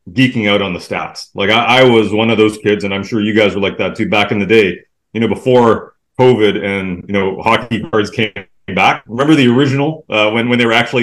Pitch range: 100-120 Hz